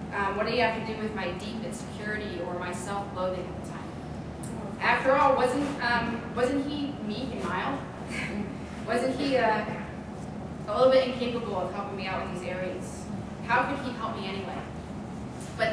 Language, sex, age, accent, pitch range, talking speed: English, female, 20-39, American, 195-235 Hz, 180 wpm